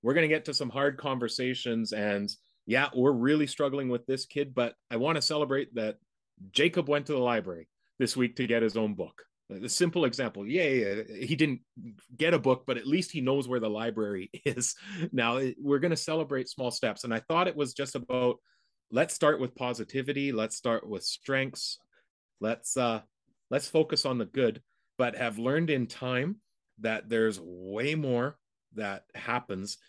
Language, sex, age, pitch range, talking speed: English, male, 30-49, 115-145 Hz, 185 wpm